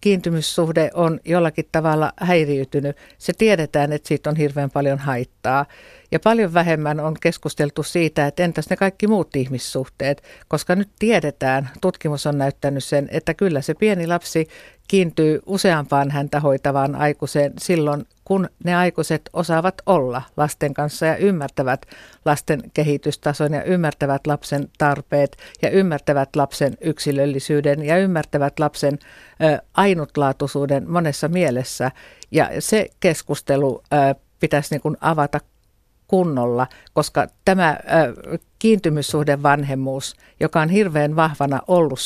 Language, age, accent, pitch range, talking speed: Finnish, 60-79, native, 140-170 Hz, 120 wpm